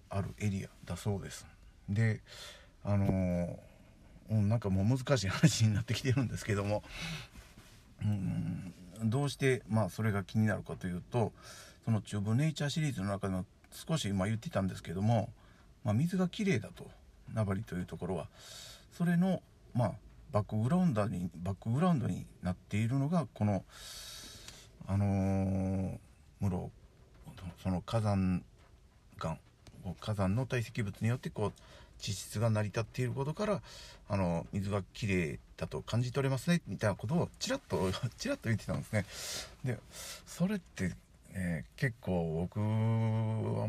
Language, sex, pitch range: Japanese, male, 95-120 Hz